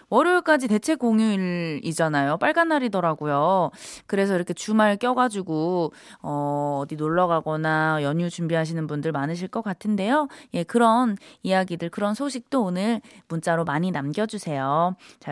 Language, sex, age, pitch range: Korean, female, 20-39, 165-275 Hz